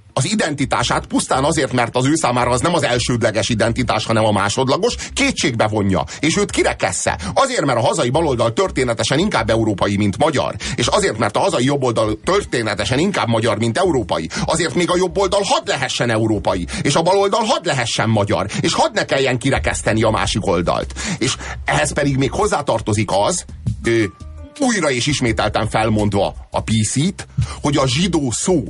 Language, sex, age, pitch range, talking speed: Hungarian, male, 30-49, 110-165 Hz, 170 wpm